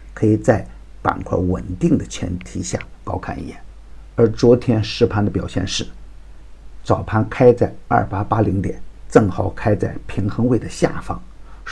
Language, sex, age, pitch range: Chinese, male, 50-69, 90-120 Hz